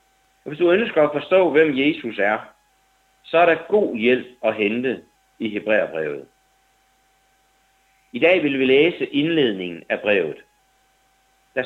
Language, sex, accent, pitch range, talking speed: Danish, male, native, 115-170 Hz, 140 wpm